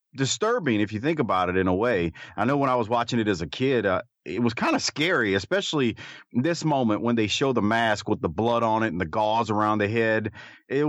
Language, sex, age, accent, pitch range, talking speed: English, male, 30-49, American, 95-135 Hz, 250 wpm